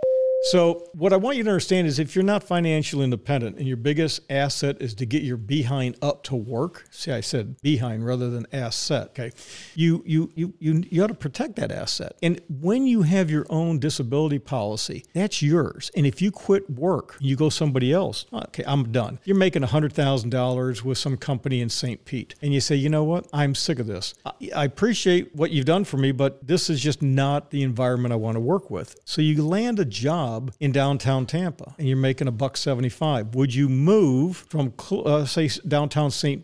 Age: 50-69